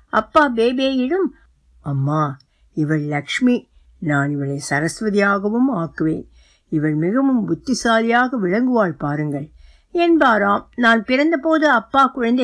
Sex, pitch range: female, 190-280 Hz